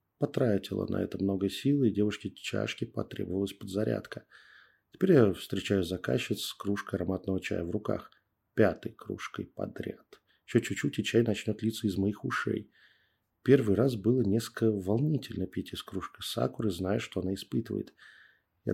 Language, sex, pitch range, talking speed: Russian, male, 95-110 Hz, 145 wpm